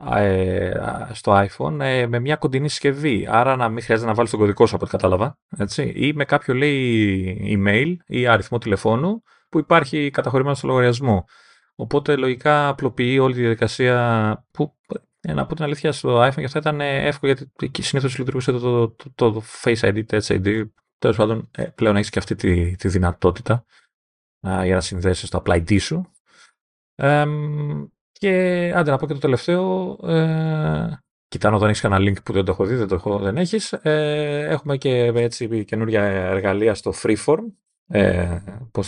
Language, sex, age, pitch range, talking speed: Greek, male, 30-49, 100-145 Hz, 165 wpm